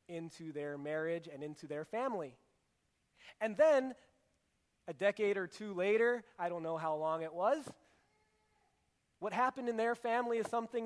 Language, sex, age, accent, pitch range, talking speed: English, male, 30-49, American, 160-220 Hz, 155 wpm